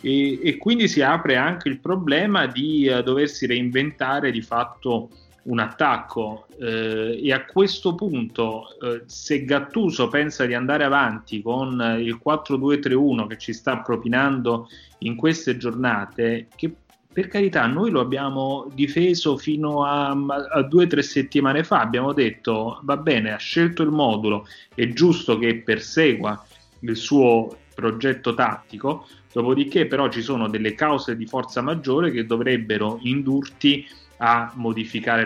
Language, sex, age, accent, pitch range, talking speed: Italian, male, 30-49, native, 115-140 Hz, 140 wpm